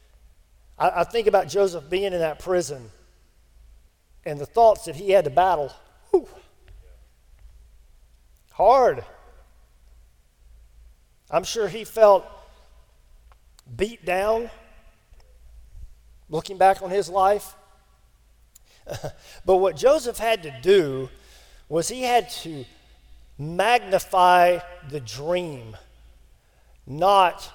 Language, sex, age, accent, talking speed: English, male, 50-69, American, 90 wpm